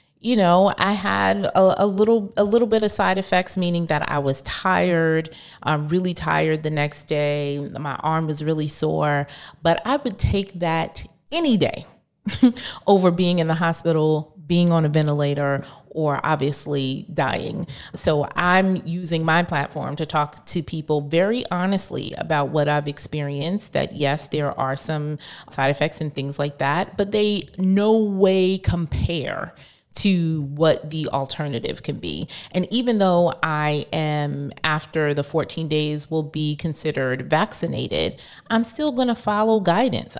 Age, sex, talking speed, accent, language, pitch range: 30-49, female, 155 wpm, American, English, 150-190 Hz